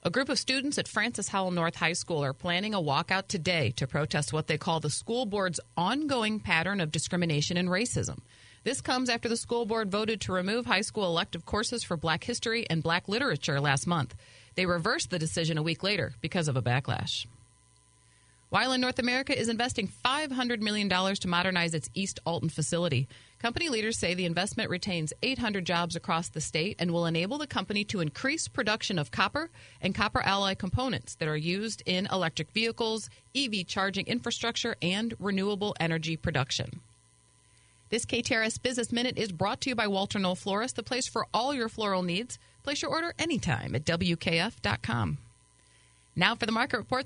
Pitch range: 160-220 Hz